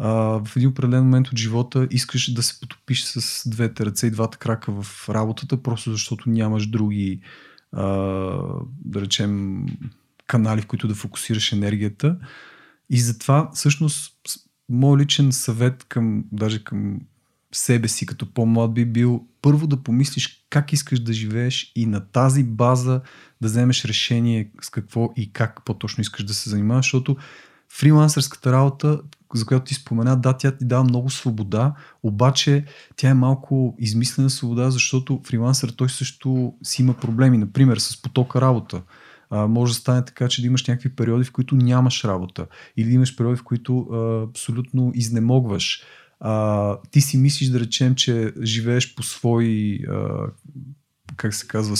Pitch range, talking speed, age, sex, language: 115-130 Hz, 155 wpm, 30-49, male, Bulgarian